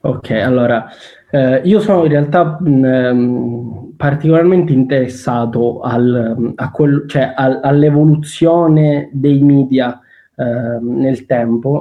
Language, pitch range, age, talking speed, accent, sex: Italian, 130-140 Hz, 20-39, 105 wpm, native, male